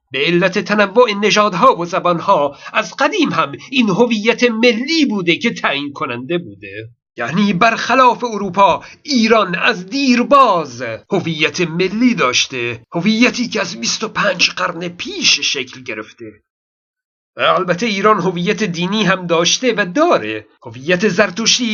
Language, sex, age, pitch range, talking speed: Persian, male, 50-69, 175-240 Hz, 125 wpm